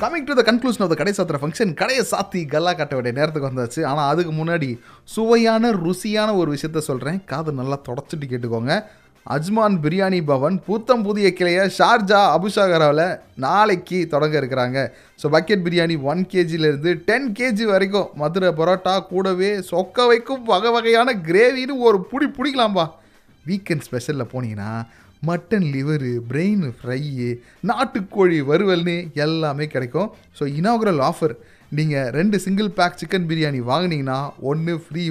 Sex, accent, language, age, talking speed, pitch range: male, native, Tamil, 30-49, 135 wpm, 140-190 Hz